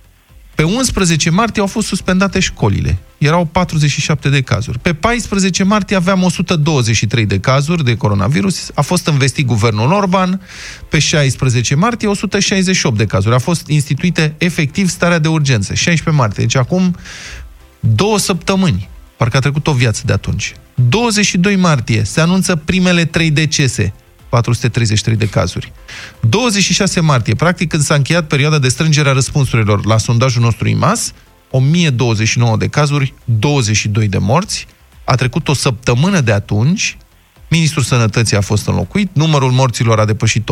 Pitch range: 115-175 Hz